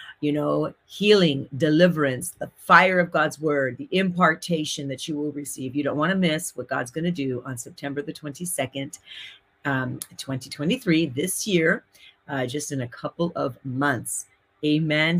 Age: 40-59